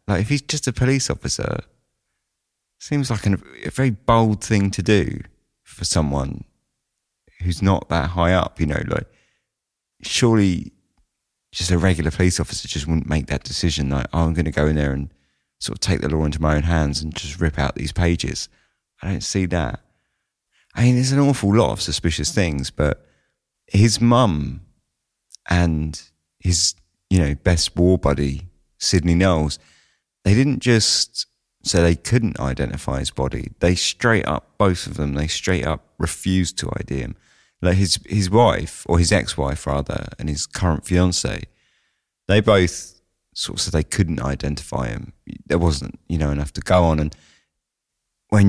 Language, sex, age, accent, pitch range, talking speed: English, male, 30-49, British, 75-95 Hz, 170 wpm